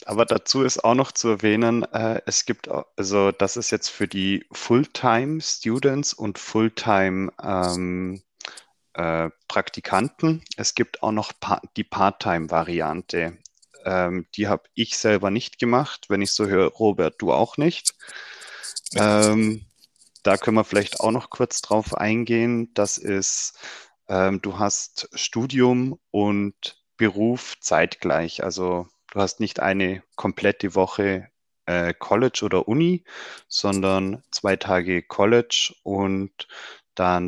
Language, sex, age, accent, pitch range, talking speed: German, male, 30-49, German, 90-115 Hz, 130 wpm